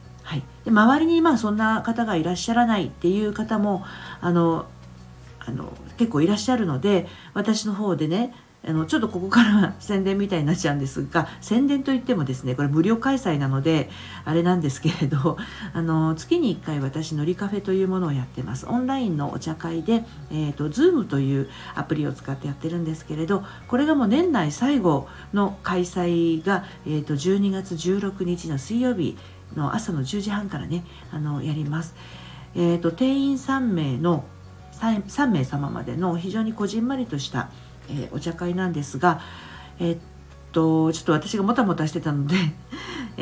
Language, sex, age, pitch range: Japanese, female, 50-69, 150-210 Hz